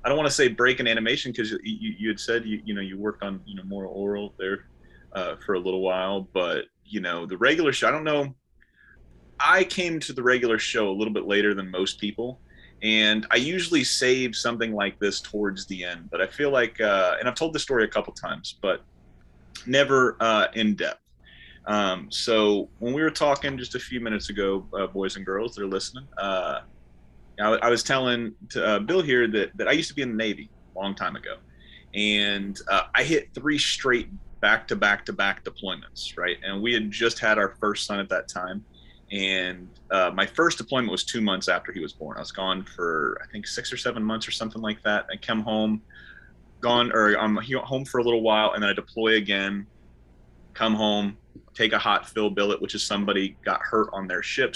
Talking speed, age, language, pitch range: 220 wpm, 30-49, English, 95-120 Hz